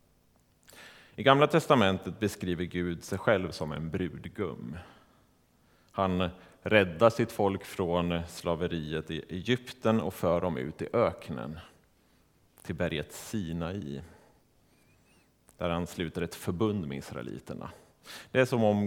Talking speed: 120 wpm